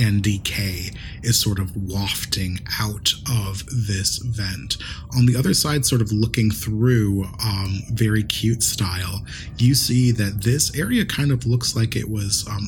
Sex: male